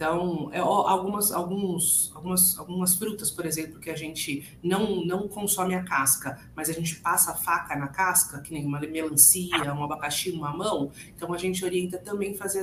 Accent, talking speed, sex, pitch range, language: Brazilian, 175 wpm, female, 170-220 Hz, Portuguese